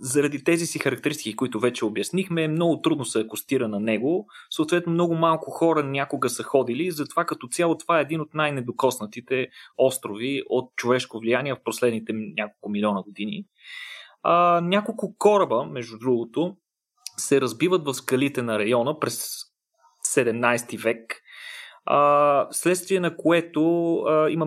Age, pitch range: 30-49, 120-160 Hz